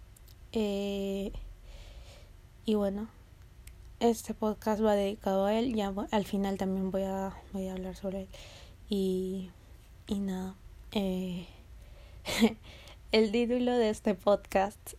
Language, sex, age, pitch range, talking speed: Spanish, female, 20-39, 195-230 Hz, 115 wpm